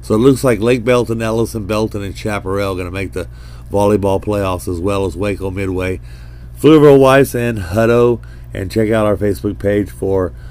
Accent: American